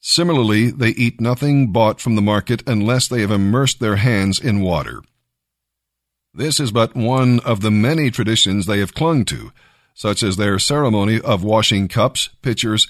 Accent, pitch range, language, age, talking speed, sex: American, 100-125 Hz, English, 50-69, 165 wpm, male